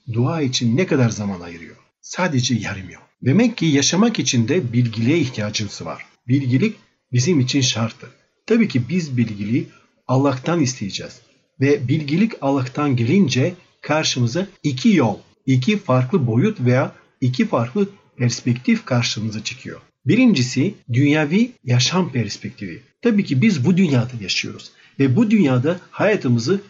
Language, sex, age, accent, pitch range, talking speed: Turkish, male, 50-69, native, 120-155 Hz, 130 wpm